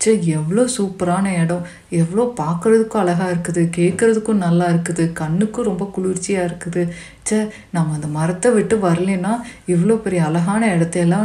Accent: native